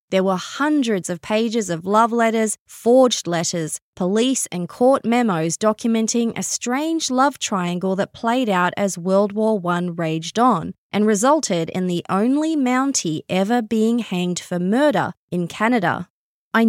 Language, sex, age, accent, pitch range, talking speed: English, female, 20-39, Australian, 180-235 Hz, 150 wpm